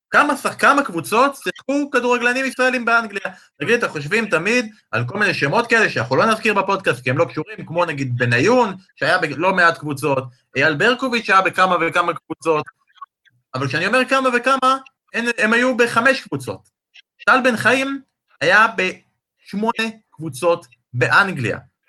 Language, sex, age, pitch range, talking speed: Hebrew, male, 30-49, 140-205 Hz, 150 wpm